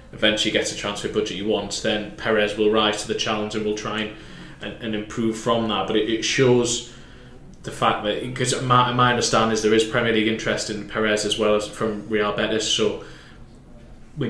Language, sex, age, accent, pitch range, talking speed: English, male, 20-39, British, 105-110 Hz, 205 wpm